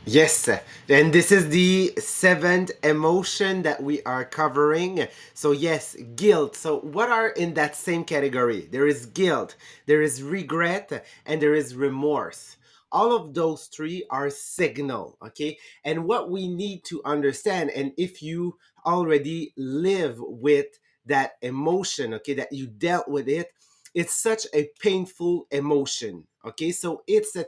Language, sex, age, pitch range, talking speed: English, male, 30-49, 145-180 Hz, 145 wpm